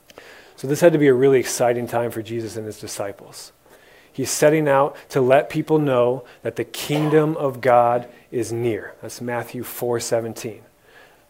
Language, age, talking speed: English, 30-49, 165 wpm